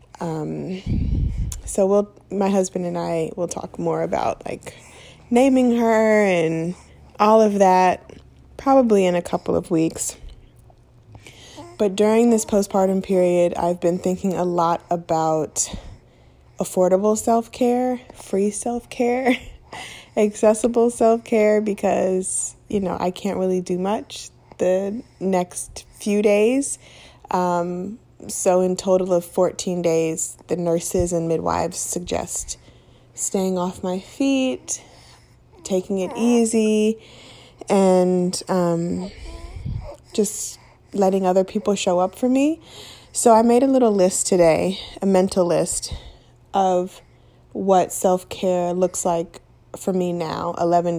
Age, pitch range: 20-39, 175-210 Hz